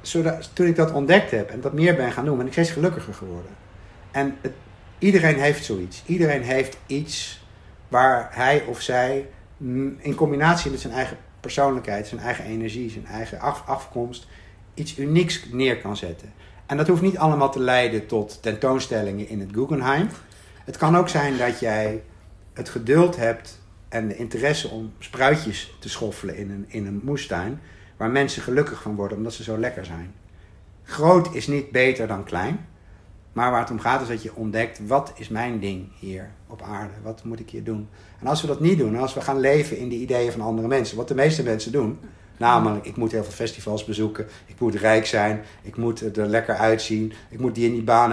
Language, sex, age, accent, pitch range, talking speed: Dutch, male, 50-69, Dutch, 105-135 Hz, 195 wpm